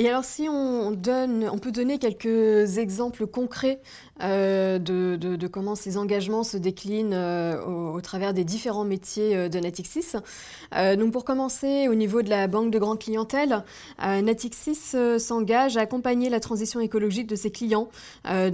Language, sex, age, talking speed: French, female, 20-39, 180 wpm